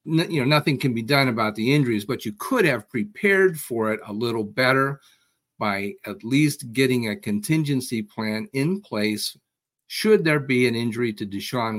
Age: 50-69